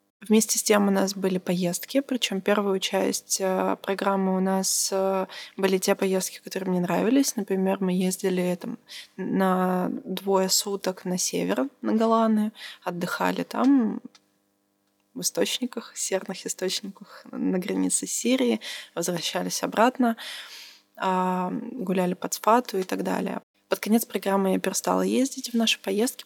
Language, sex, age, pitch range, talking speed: Russian, female, 20-39, 185-210 Hz, 130 wpm